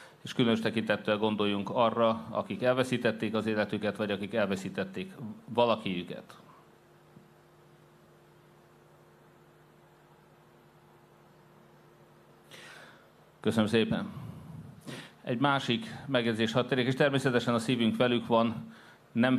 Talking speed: 80 wpm